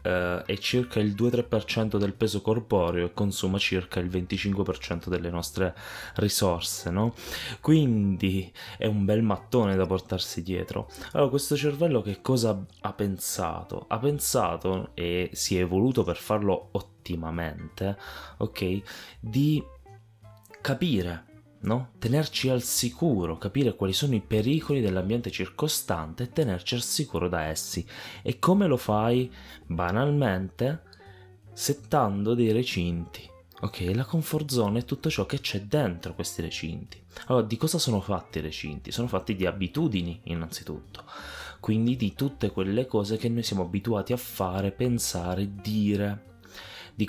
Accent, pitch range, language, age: native, 90-120 Hz, Italian, 20-39